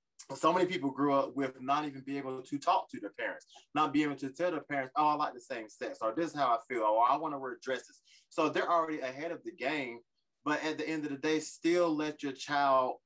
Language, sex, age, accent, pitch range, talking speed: English, male, 20-39, American, 135-170 Hz, 265 wpm